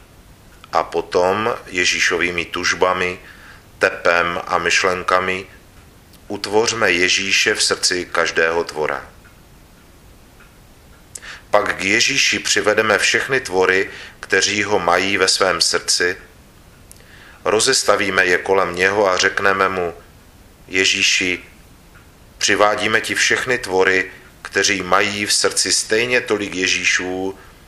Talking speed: 95 wpm